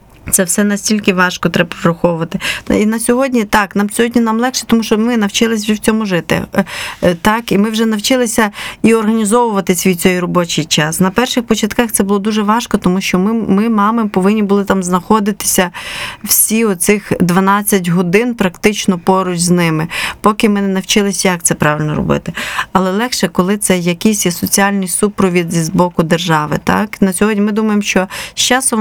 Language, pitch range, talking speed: Ukrainian, 185-220 Hz, 175 wpm